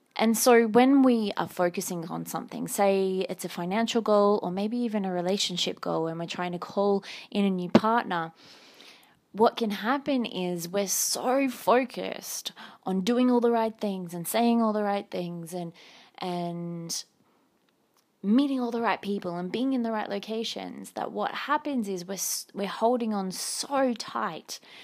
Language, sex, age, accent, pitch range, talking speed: English, female, 20-39, Australian, 180-220 Hz, 170 wpm